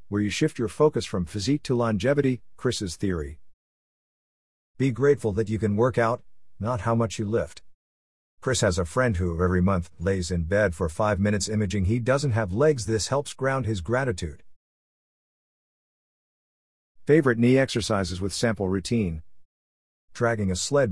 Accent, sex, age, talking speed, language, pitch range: American, male, 50-69, 160 wpm, English, 85-120 Hz